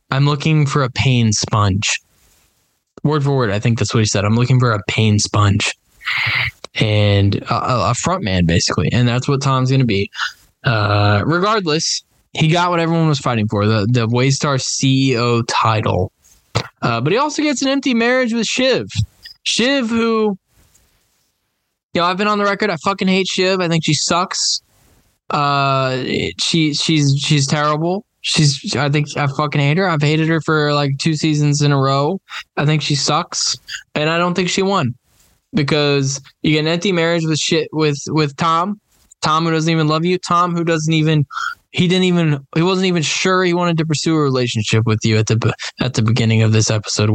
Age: 10-29